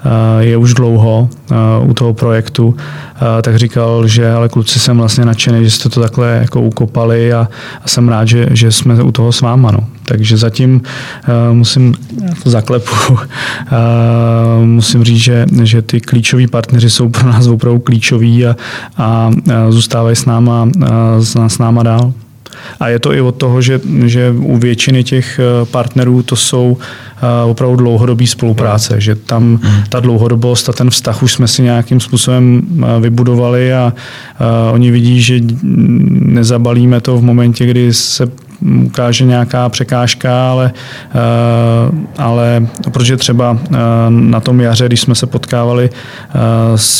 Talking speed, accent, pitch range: 145 wpm, native, 115-125 Hz